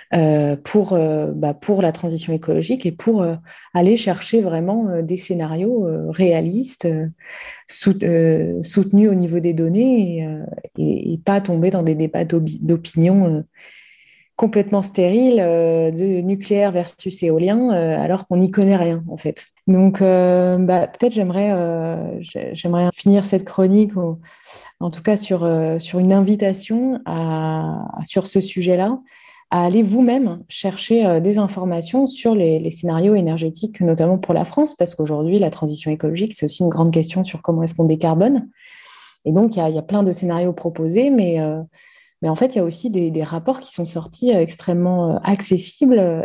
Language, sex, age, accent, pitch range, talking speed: French, female, 20-39, French, 165-205 Hz, 150 wpm